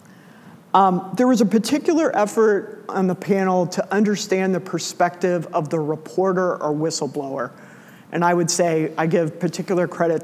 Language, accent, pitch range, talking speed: English, American, 160-185 Hz, 150 wpm